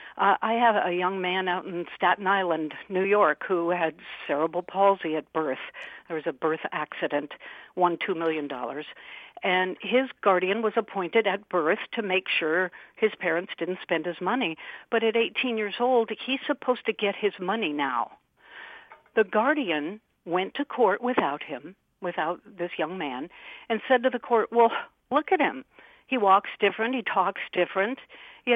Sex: female